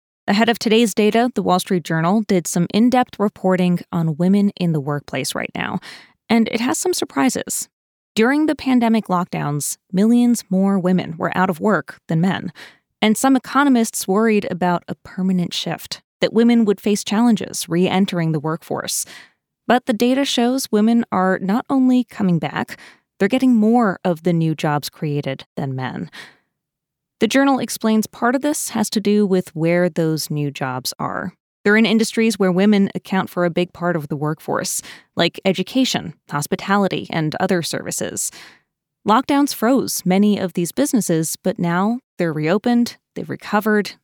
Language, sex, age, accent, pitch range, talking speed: English, female, 20-39, American, 170-225 Hz, 160 wpm